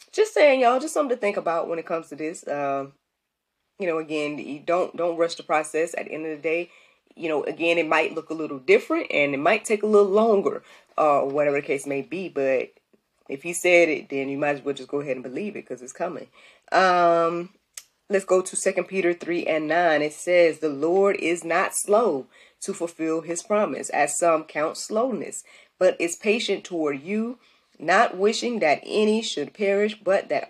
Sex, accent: female, American